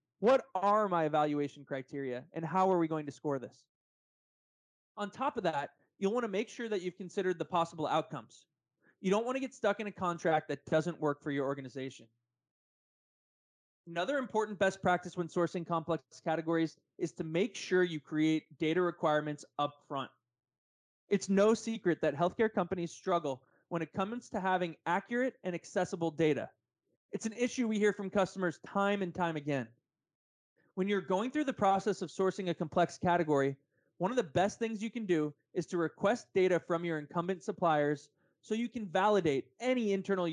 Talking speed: 180 wpm